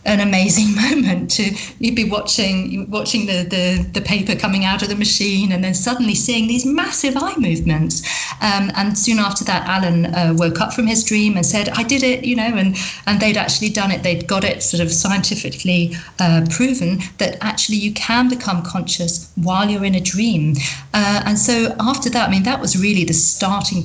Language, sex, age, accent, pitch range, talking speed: English, female, 40-59, British, 180-215 Hz, 205 wpm